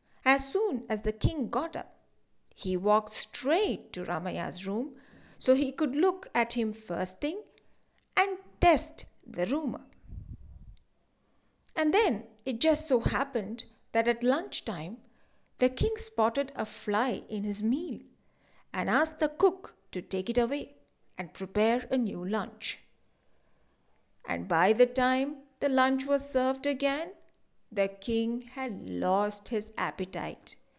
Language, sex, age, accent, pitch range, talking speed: English, female, 50-69, Indian, 220-305 Hz, 135 wpm